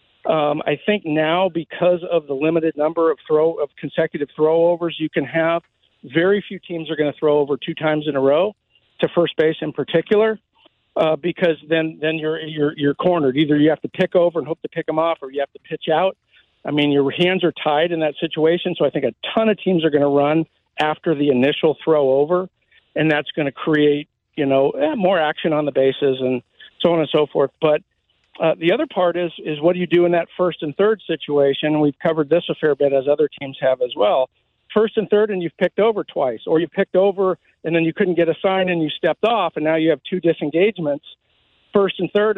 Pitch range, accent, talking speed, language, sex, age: 150-185 Hz, American, 235 wpm, English, male, 50-69